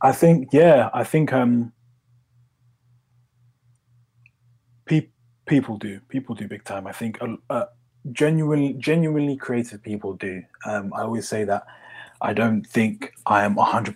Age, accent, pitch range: 20-39, British, 105-125 Hz